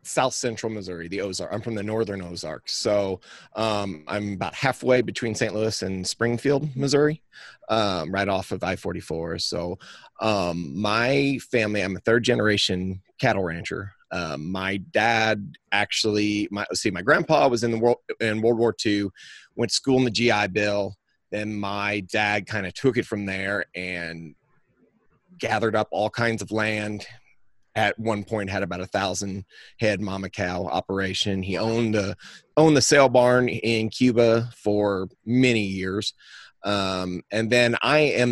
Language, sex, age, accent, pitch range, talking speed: English, male, 30-49, American, 95-115 Hz, 160 wpm